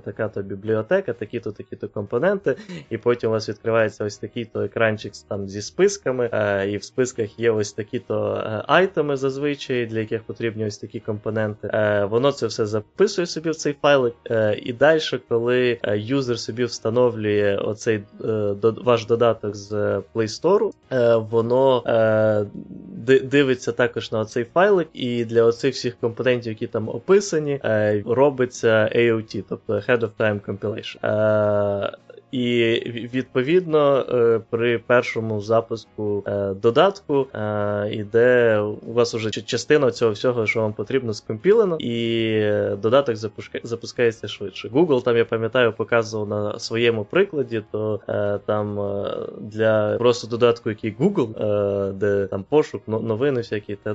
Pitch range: 105-125 Hz